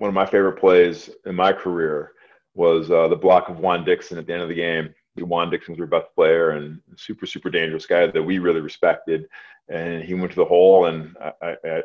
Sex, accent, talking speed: male, American, 225 wpm